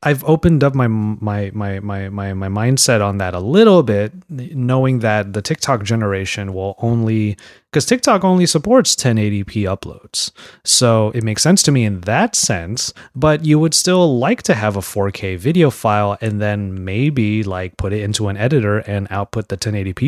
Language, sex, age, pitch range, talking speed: English, male, 30-49, 100-135 Hz, 180 wpm